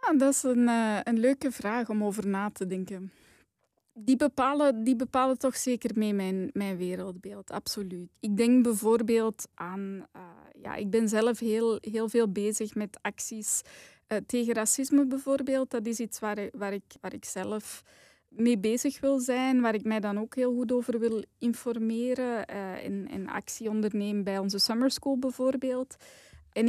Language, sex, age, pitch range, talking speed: Dutch, female, 20-39, 210-250 Hz, 175 wpm